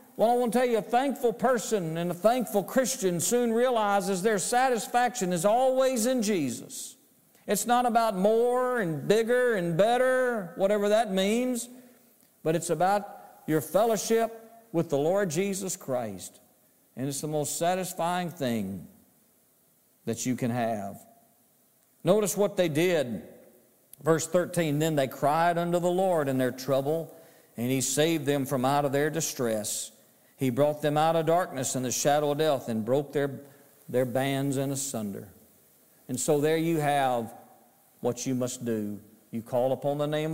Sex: male